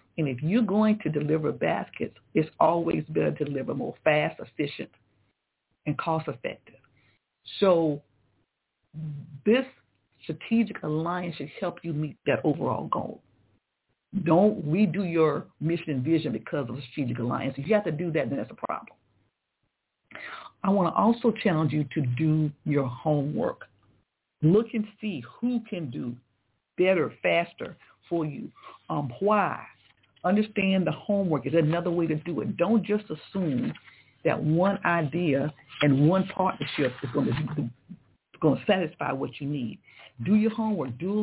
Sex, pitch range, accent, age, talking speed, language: female, 145-200 Hz, American, 60-79, 150 wpm, English